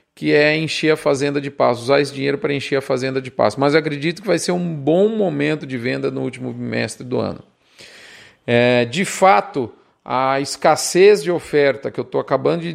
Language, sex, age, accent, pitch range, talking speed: Portuguese, male, 40-59, Brazilian, 150-210 Hz, 205 wpm